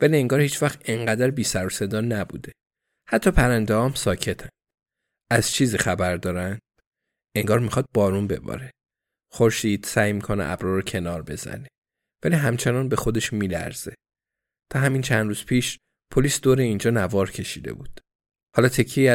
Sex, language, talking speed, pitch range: male, Persian, 140 wpm, 100-125 Hz